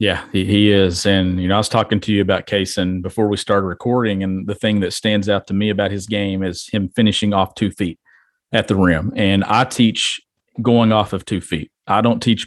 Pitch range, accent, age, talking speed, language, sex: 100-110 Hz, American, 40-59, 235 wpm, English, male